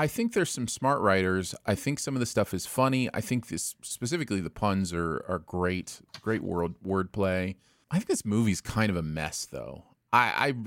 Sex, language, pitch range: male, English, 95-130 Hz